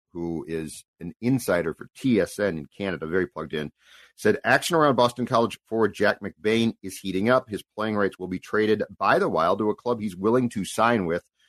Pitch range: 95-120 Hz